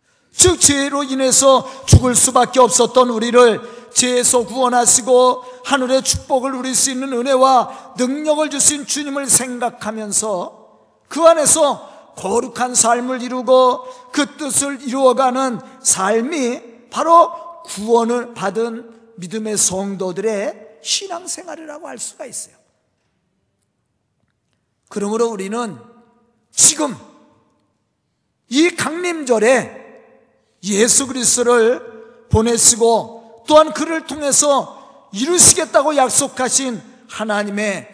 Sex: male